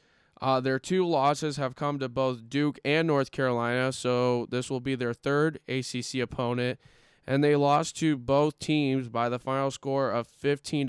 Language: English